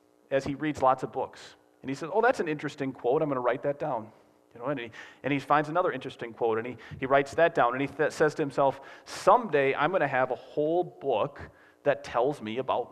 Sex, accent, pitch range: male, American, 105-150 Hz